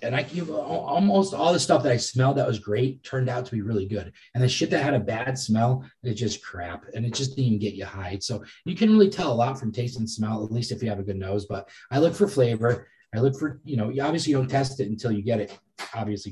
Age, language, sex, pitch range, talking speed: 20-39, English, male, 100-130 Hz, 285 wpm